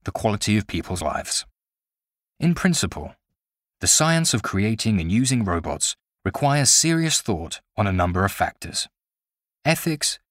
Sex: male